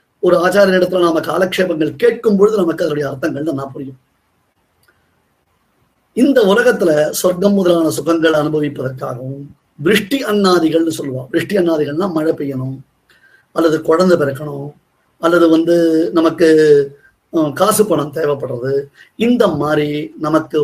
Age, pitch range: 30-49, 150-200 Hz